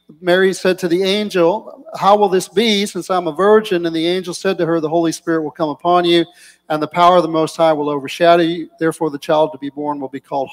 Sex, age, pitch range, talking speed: male, 50-69, 160-185 Hz, 255 wpm